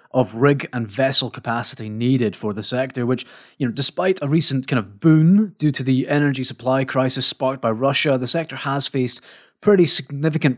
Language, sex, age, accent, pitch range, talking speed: English, male, 20-39, British, 115-145 Hz, 185 wpm